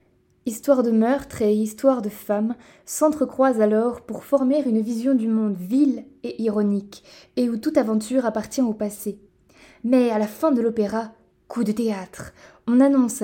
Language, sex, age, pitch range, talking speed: French, female, 20-39, 215-255 Hz, 165 wpm